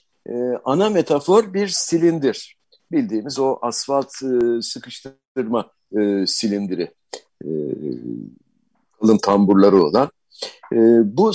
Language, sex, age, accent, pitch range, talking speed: Turkish, male, 60-79, native, 115-165 Hz, 65 wpm